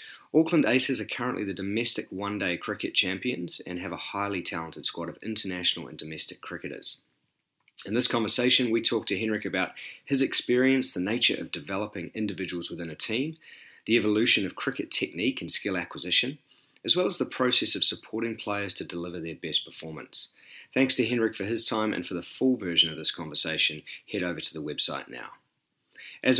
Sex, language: male, English